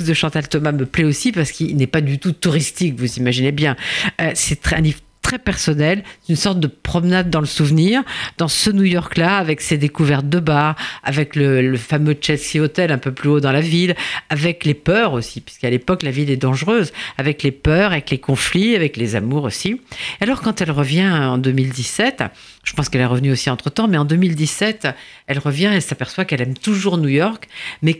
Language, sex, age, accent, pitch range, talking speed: French, female, 50-69, French, 145-195 Hz, 205 wpm